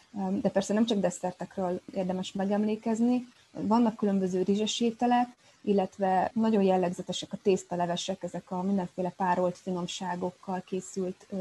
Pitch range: 180-205 Hz